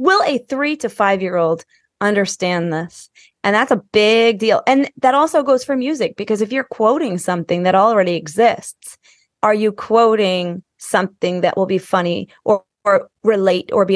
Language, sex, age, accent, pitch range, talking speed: English, female, 20-39, American, 185-240 Hz, 170 wpm